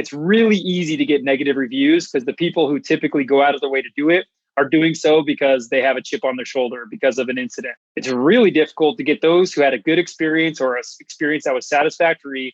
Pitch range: 135-165 Hz